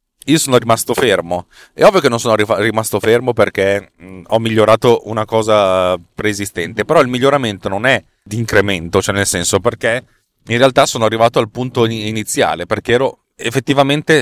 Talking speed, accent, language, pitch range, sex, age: 160 wpm, native, Italian, 100-130 Hz, male, 30-49